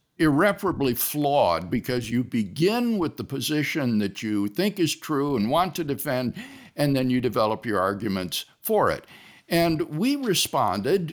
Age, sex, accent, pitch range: 60-79, male, American, 125-195 Hz